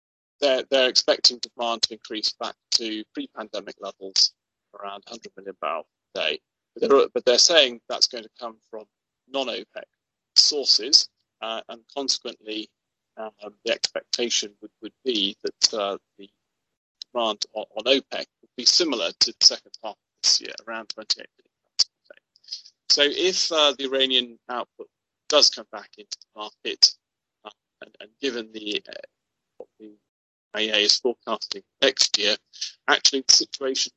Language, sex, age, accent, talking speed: English, male, 30-49, British, 150 wpm